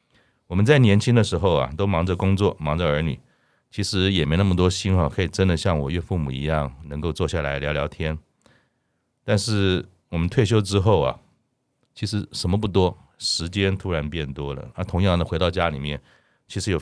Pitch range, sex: 80-105 Hz, male